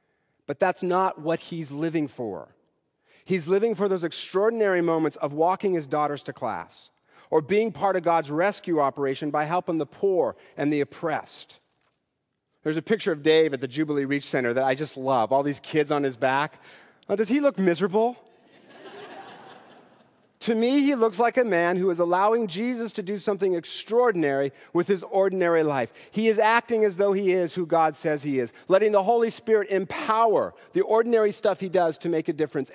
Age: 40-59